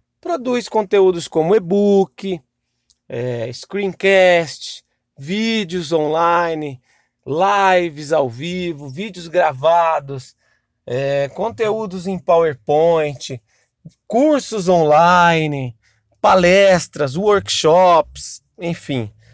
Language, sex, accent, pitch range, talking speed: English, male, Brazilian, 135-185 Hz, 70 wpm